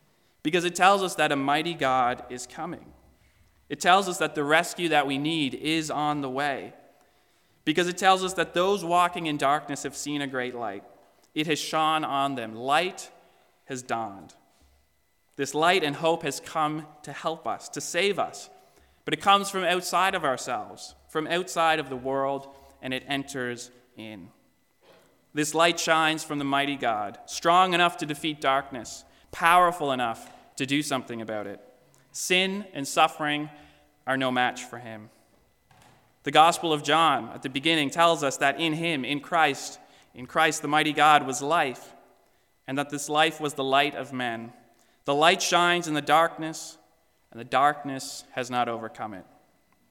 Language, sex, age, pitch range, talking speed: English, male, 30-49, 130-160 Hz, 170 wpm